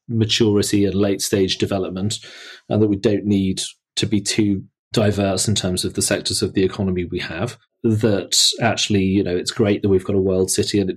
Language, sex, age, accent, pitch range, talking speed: English, male, 30-49, British, 95-110 Hz, 210 wpm